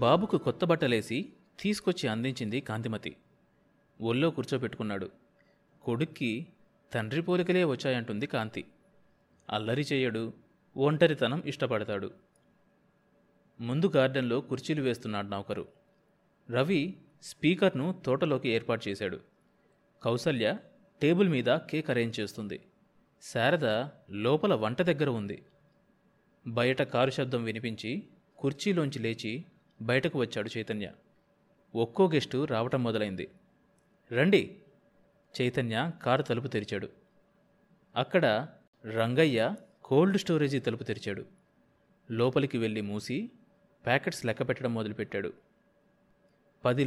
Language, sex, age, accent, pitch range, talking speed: Telugu, male, 30-49, native, 115-155 Hz, 90 wpm